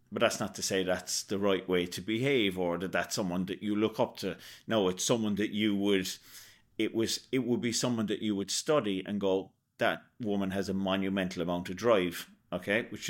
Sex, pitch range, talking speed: male, 95-110 Hz, 220 wpm